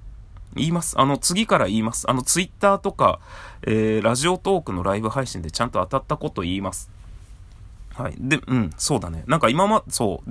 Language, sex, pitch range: Japanese, male, 95-140 Hz